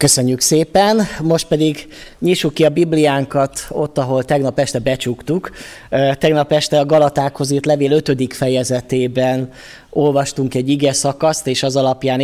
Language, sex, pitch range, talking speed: Hungarian, male, 130-160 Hz, 135 wpm